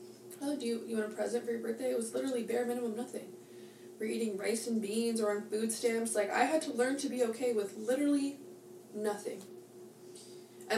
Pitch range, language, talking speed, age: 190-235 Hz, English, 205 wpm, 20-39